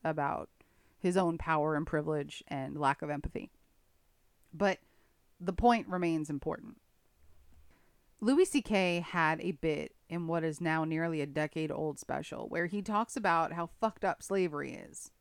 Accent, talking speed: American, 145 wpm